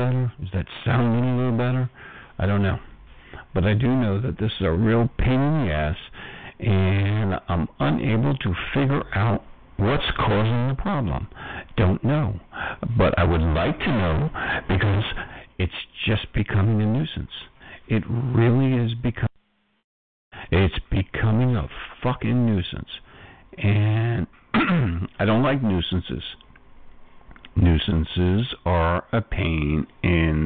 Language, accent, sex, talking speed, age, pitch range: English, American, male, 130 wpm, 60-79, 85-115 Hz